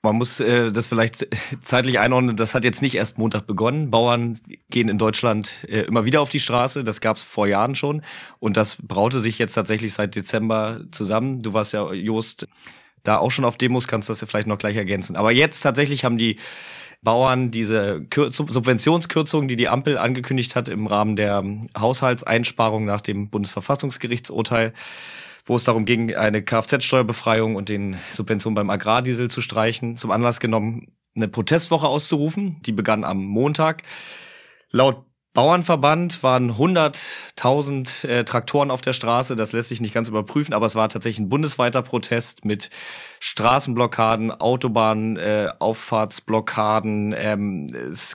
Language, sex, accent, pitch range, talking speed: German, male, German, 110-130 Hz, 160 wpm